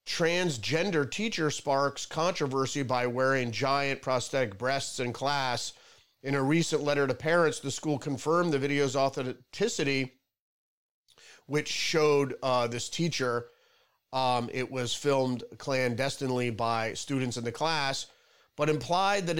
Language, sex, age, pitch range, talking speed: English, male, 30-49, 130-155 Hz, 125 wpm